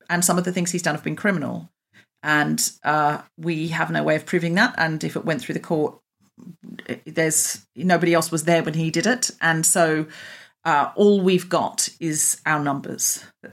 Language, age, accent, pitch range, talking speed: English, 40-59, British, 155-200 Hz, 200 wpm